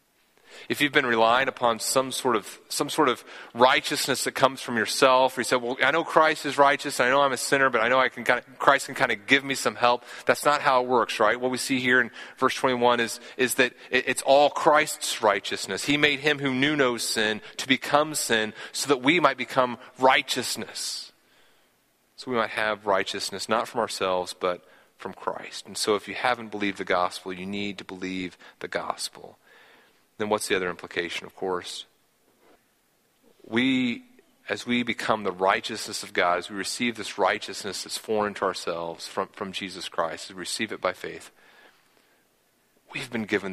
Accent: American